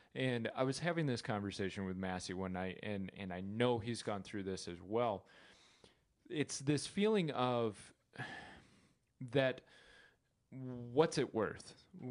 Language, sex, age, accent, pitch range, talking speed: English, male, 20-39, American, 115-145 Hz, 140 wpm